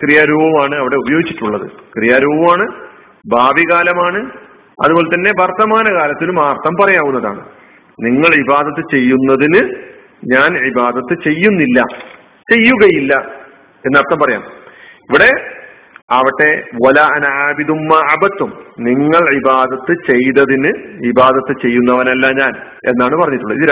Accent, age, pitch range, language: native, 50-69, 140-210 Hz, Malayalam